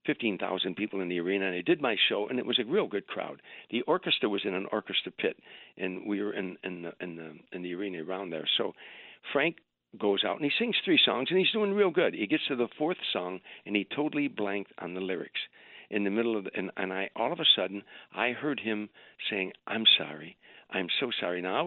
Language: English